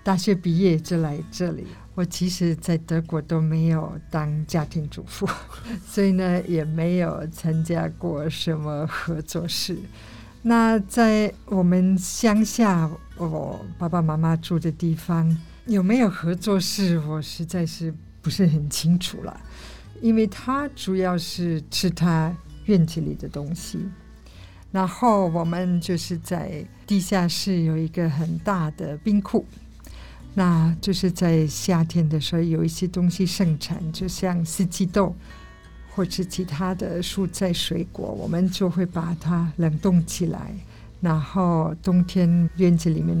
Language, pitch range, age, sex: Chinese, 160-185 Hz, 50-69, female